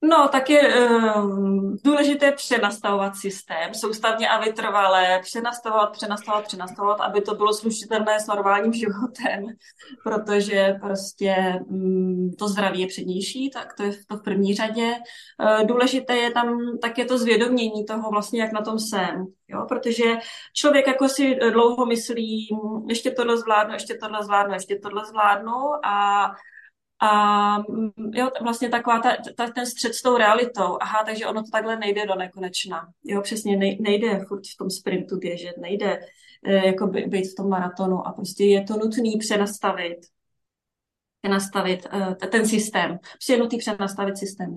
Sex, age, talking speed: female, 20-39, 155 wpm